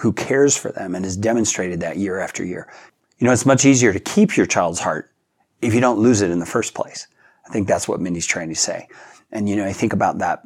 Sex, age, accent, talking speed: male, 40-59, American, 260 wpm